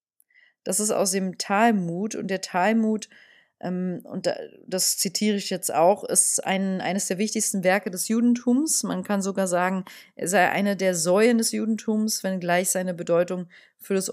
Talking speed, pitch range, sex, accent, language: 170 wpm, 175-215 Hz, female, German, German